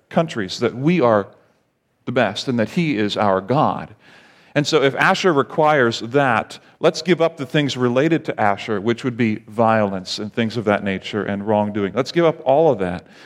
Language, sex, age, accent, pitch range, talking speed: English, male, 40-59, American, 110-155 Hz, 195 wpm